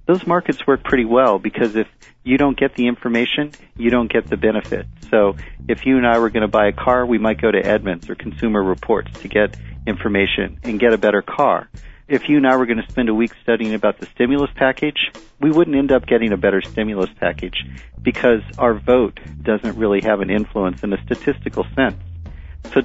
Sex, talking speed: male, 215 wpm